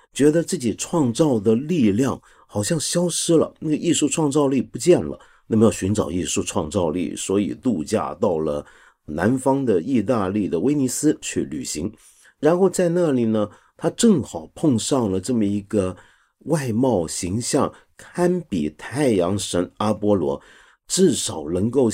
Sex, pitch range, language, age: male, 100-150 Hz, Chinese, 50-69